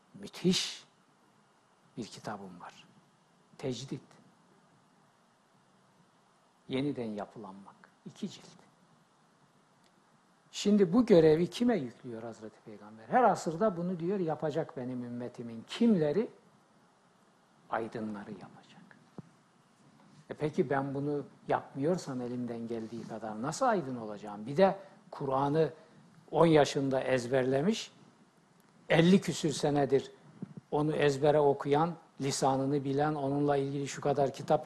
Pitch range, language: 140-205 Hz, Turkish